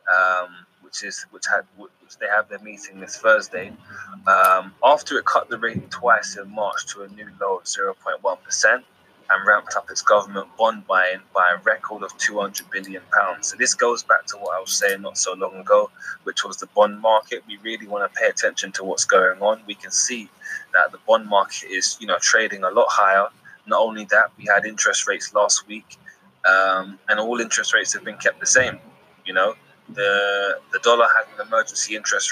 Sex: male